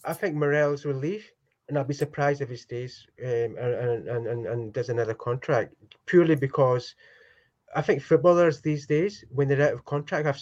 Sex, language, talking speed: male, English, 190 wpm